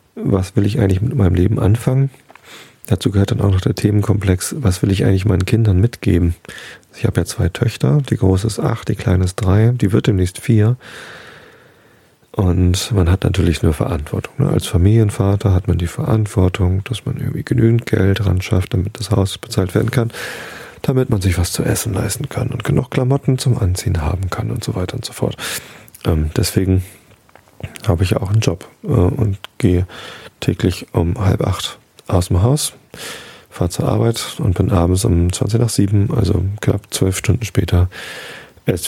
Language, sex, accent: German, male, German